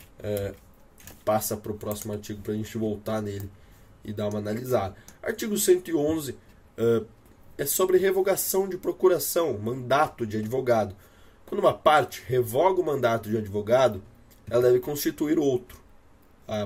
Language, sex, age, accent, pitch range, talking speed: Portuguese, male, 20-39, Brazilian, 105-130 Hz, 140 wpm